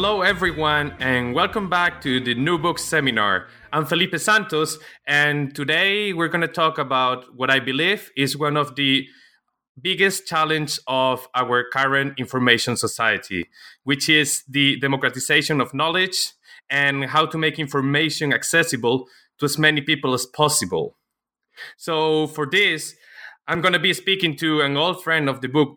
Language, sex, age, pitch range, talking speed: English, male, 20-39, 135-170 Hz, 155 wpm